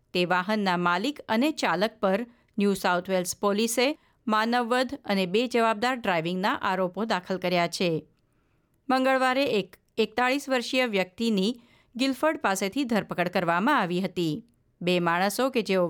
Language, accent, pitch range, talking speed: Gujarati, native, 185-250 Hz, 120 wpm